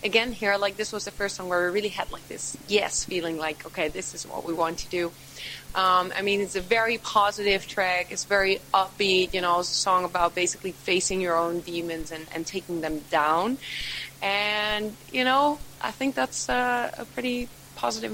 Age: 20-39